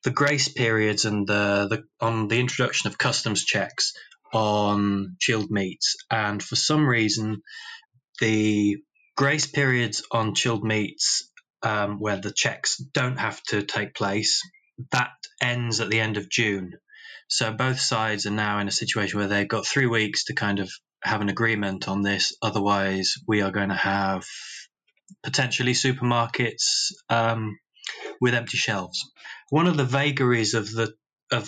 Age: 20-39